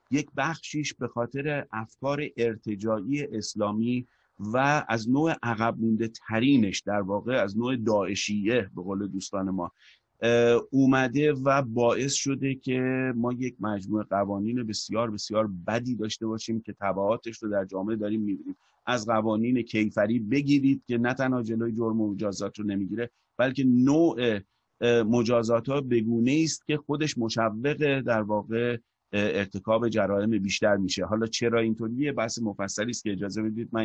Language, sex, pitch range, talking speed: Persian, male, 105-135 Hz, 140 wpm